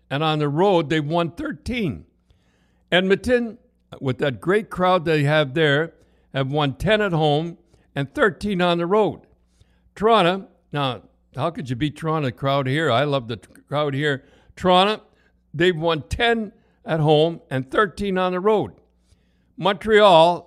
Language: English